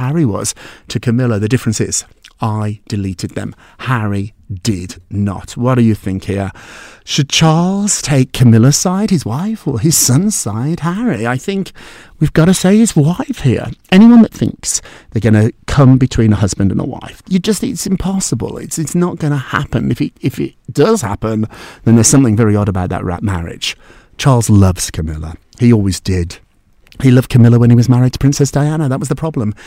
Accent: British